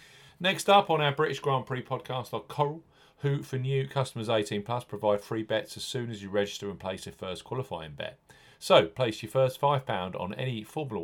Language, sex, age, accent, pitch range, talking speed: English, male, 40-59, British, 105-135 Hz, 200 wpm